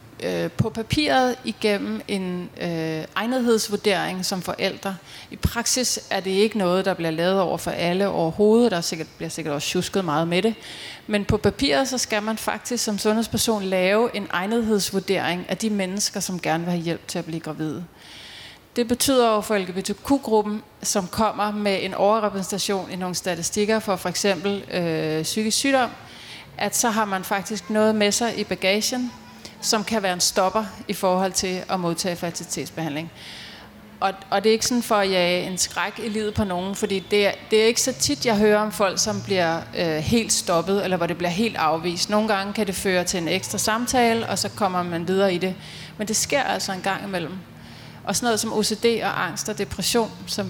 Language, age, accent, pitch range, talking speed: Danish, 30-49, native, 180-215 Hz, 195 wpm